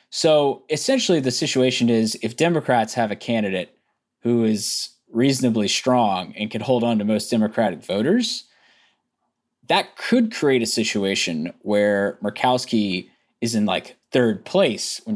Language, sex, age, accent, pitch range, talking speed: English, male, 20-39, American, 105-130 Hz, 140 wpm